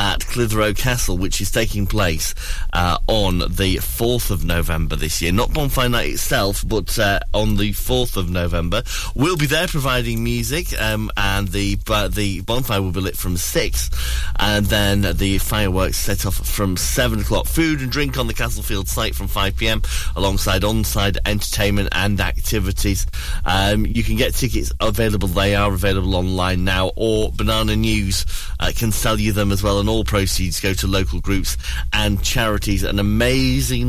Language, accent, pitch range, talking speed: English, British, 95-120 Hz, 175 wpm